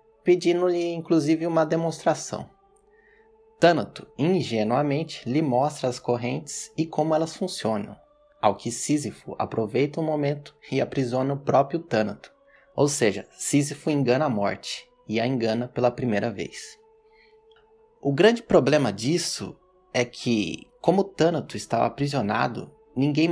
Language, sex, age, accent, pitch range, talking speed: Portuguese, male, 20-39, Brazilian, 125-175 Hz, 125 wpm